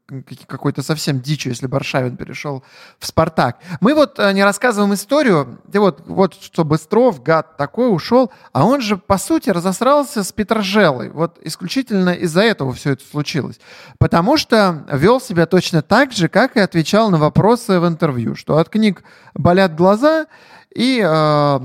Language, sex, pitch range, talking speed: Russian, male, 145-210 Hz, 155 wpm